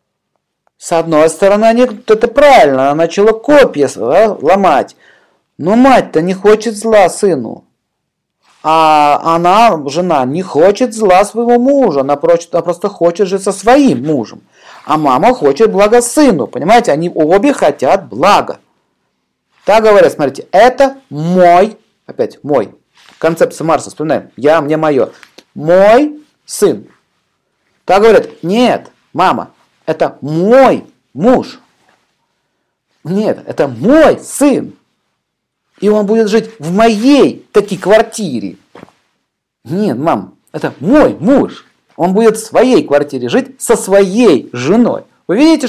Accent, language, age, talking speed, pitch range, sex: native, Russian, 40-59, 120 wpm, 175-255 Hz, male